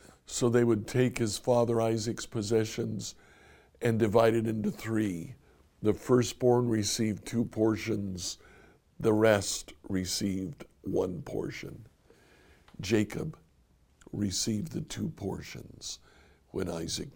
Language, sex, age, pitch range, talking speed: English, male, 60-79, 90-120 Hz, 105 wpm